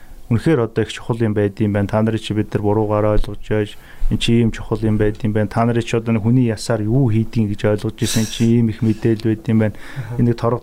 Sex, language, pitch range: male, Korean, 105-120 Hz